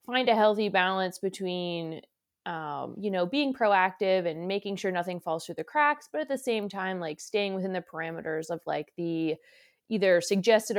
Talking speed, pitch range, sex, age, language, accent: 185 wpm, 180-230 Hz, female, 20-39, English, American